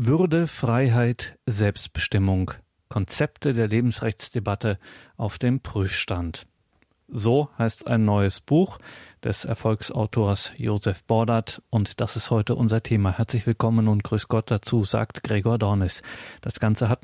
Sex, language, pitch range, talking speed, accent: male, German, 105-125 Hz, 125 wpm, German